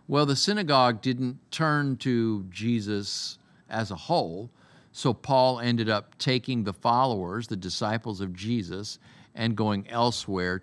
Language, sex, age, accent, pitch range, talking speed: English, male, 50-69, American, 100-135 Hz, 135 wpm